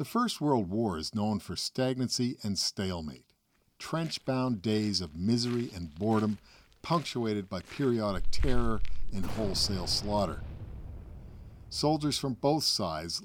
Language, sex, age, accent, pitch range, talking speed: English, male, 50-69, American, 95-125 Hz, 120 wpm